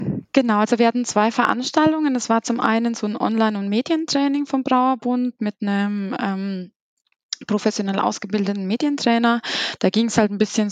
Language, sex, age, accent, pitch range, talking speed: German, female, 20-39, German, 195-225 Hz, 160 wpm